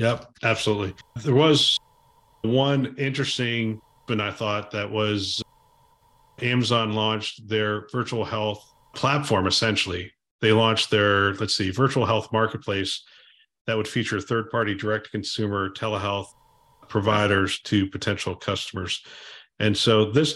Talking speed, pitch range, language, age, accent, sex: 120 wpm, 105-125 Hz, English, 40-59, American, male